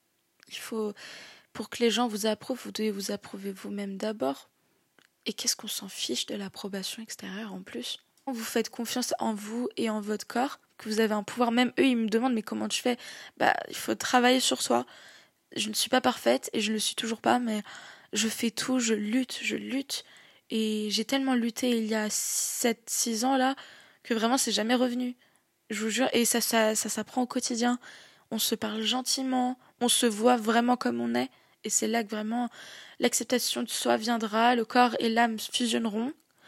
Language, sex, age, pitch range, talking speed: French, female, 20-39, 220-250 Hz, 205 wpm